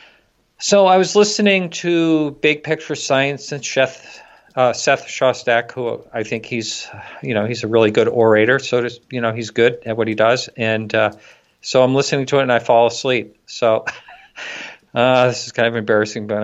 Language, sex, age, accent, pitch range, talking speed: English, male, 50-69, American, 110-135 Hz, 195 wpm